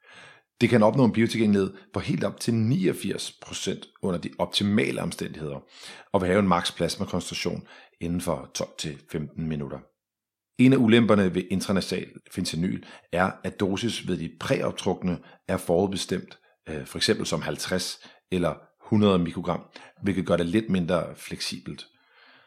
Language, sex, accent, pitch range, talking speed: Danish, male, native, 90-110 Hz, 140 wpm